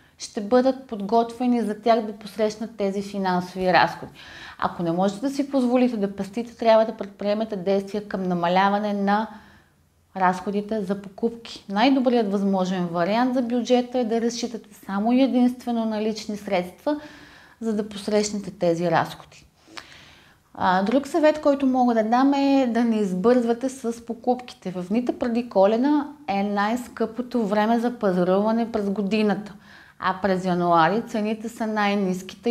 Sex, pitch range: female, 195-240 Hz